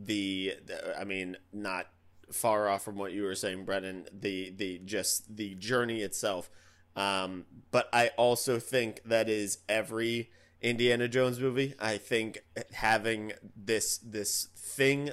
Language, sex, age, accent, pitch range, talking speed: English, male, 20-39, American, 95-120 Hz, 140 wpm